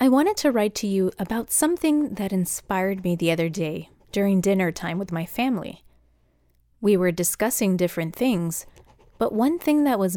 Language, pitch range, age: English, 175-225 Hz, 30-49